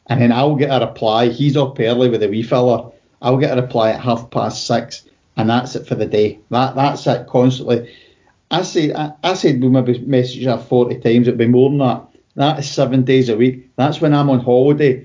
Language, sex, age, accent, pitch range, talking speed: English, male, 40-59, British, 125-150 Hz, 225 wpm